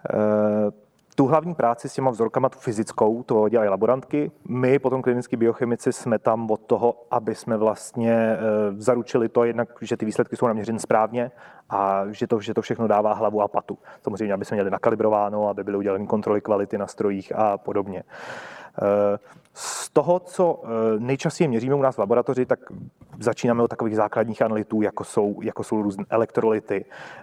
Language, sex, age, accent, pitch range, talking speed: Czech, male, 30-49, native, 105-120 Hz, 170 wpm